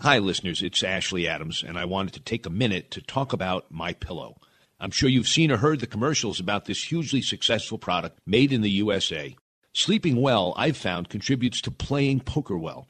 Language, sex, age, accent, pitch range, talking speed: English, male, 50-69, American, 110-140 Hz, 200 wpm